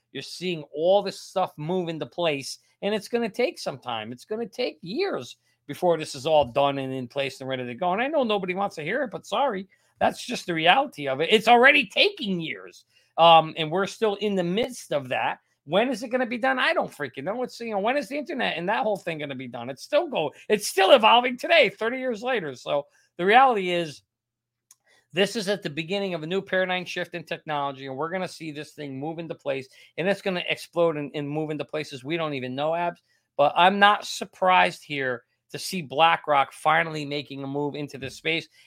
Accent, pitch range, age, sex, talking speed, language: American, 145-205 Hz, 40-59, male, 235 wpm, English